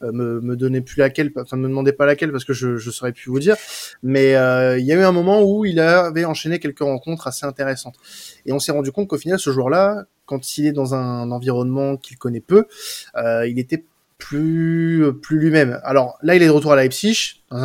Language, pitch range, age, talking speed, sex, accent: French, 130-165 Hz, 20-39, 230 wpm, male, French